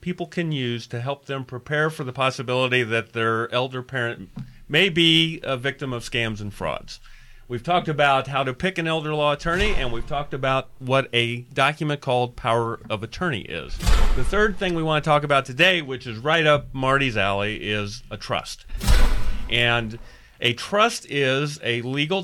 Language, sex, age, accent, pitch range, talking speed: English, male, 40-59, American, 115-150 Hz, 185 wpm